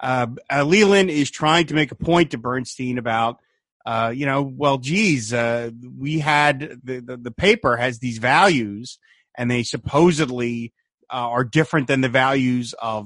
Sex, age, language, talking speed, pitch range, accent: male, 30-49, English, 165 wpm, 125-175 Hz, American